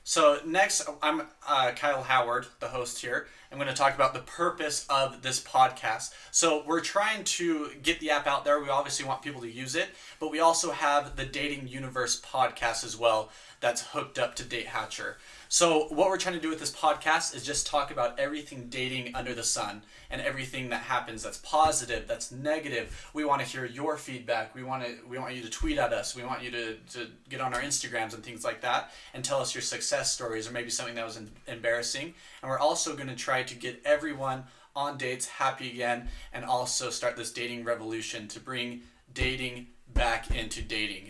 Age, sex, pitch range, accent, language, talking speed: 20-39, male, 120-150 Hz, American, English, 205 wpm